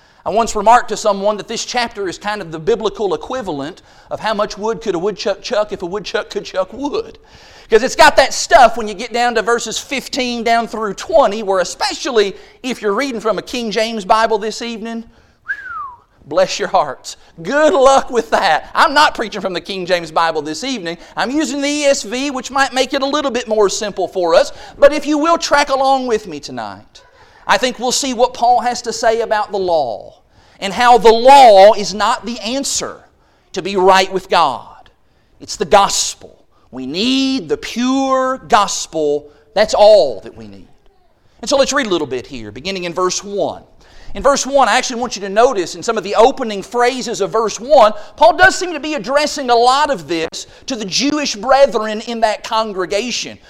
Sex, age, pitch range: male, 40-59, 205-275 Hz